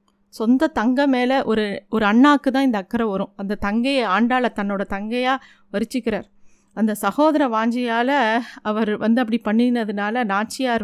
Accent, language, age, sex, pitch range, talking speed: native, Tamil, 30-49, female, 210-250 Hz, 135 wpm